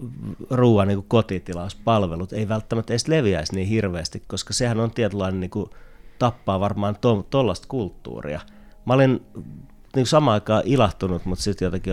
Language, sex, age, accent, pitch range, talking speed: Finnish, male, 30-49, native, 90-115 Hz, 140 wpm